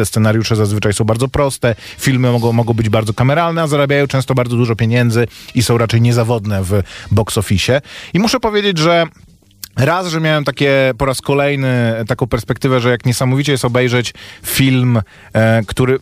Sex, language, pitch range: male, Polish, 120-150 Hz